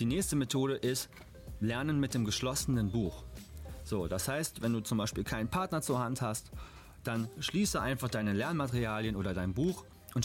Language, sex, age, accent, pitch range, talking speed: German, male, 30-49, German, 105-135 Hz, 175 wpm